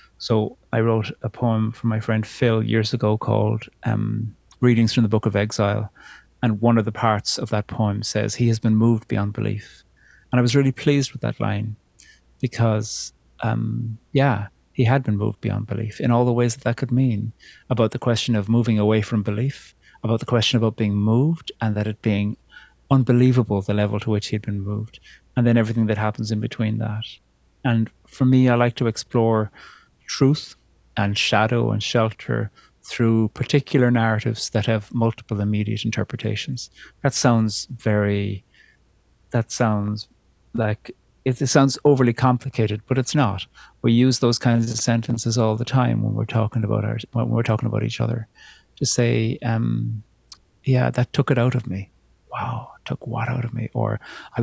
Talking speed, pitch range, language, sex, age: 185 wpm, 105-120 Hz, English, male, 30-49